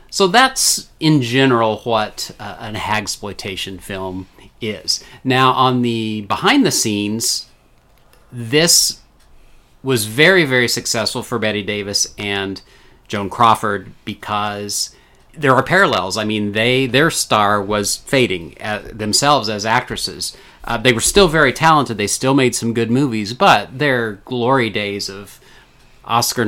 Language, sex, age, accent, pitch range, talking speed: English, male, 40-59, American, 100-130 Hz, 130 wpm